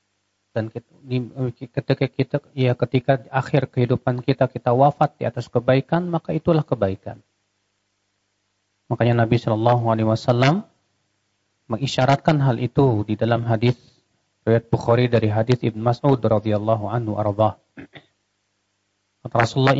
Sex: male